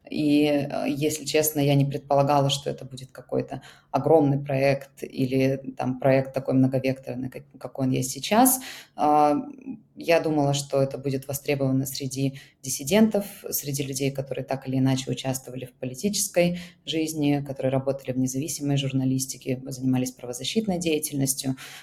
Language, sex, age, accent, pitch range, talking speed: Russian, female, 20-39, native, 130-145 Hz, 125 wpm